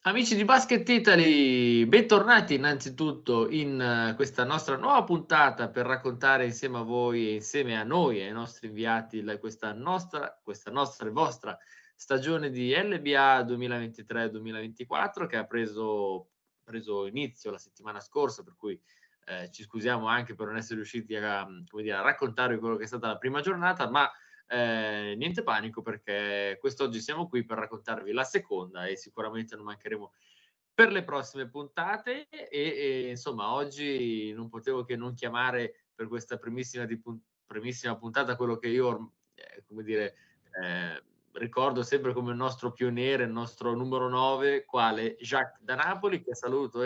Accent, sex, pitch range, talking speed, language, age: native, male, 110-140 Hz, 150 wpm, Italian, 20-39